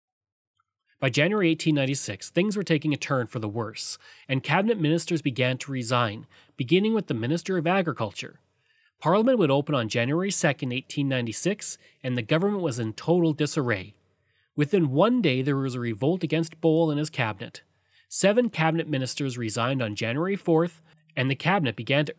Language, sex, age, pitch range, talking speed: English, male, 30-49, 120-170 Hz, 165 wpm